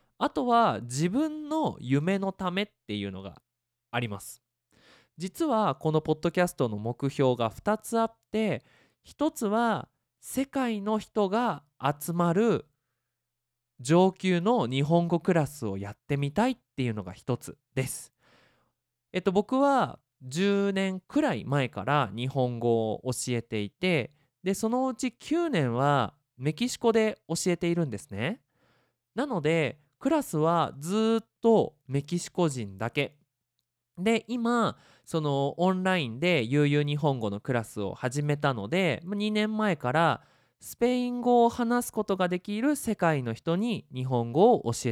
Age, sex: 20-39, male